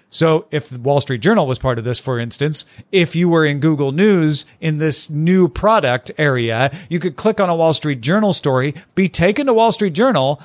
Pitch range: 140-190 Hz